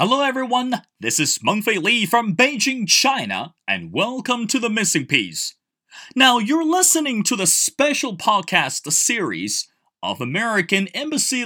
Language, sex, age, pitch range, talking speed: English, male, 30-49, 175-265 Hz, 135 wpm